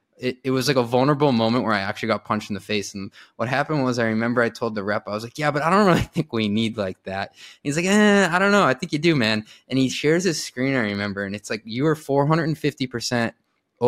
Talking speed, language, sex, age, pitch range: 275 wpm, English, male, 20-39, 110-150 Hz